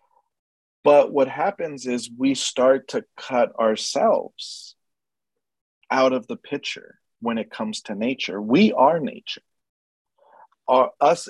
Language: English